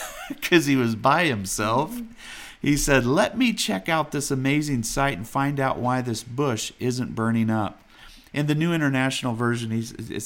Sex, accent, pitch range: male, American, 110-135 Hz